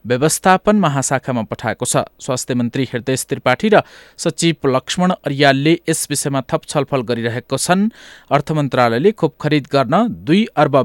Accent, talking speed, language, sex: Indian, 145 wpm, English, male